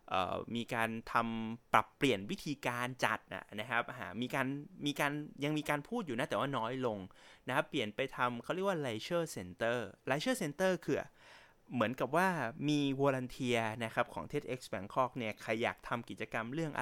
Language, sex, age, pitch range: English, male, 20-39, 110-145 Hz